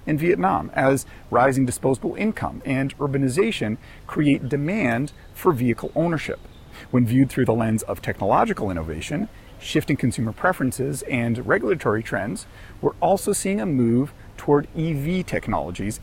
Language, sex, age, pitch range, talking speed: English, male, 40-59, 125-175 Hz, 130 wpm